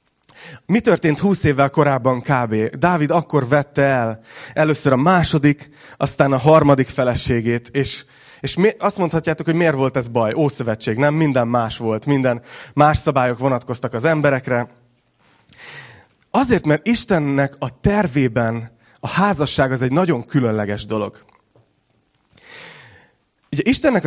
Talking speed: 130 wpm